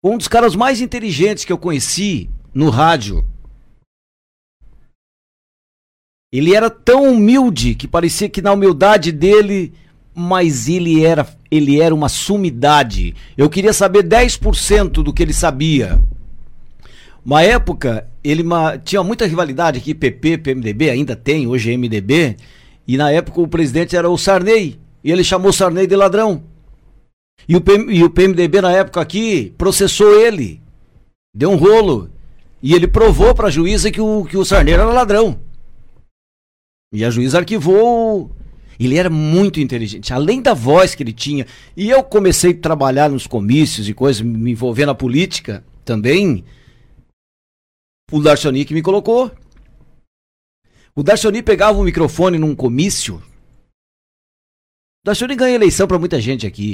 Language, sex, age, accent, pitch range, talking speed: Portuguese, male, 60-79, Brazilian, 135-200 Hz, 140 wpm